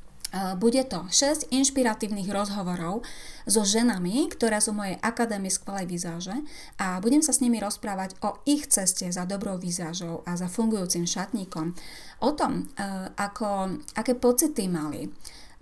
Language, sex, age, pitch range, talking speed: Slovak, female, 30-49, 195-250 Hz, 135 wpm